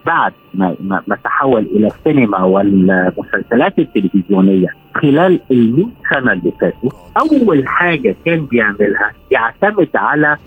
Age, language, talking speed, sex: 50-69, Arabic, 105 wpm, male